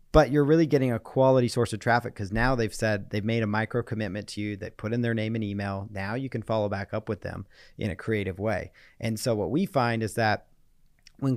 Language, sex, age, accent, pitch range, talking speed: English, male, 40-59, American, 105-130 Hz, 250 wpm